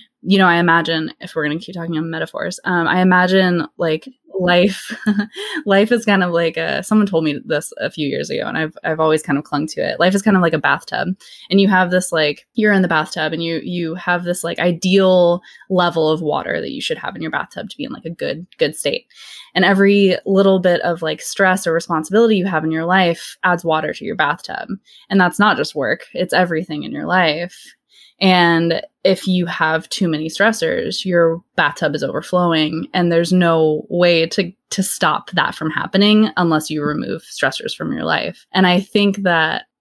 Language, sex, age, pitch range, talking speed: English, female, 20-39, 160-190 Hz, 215 wpm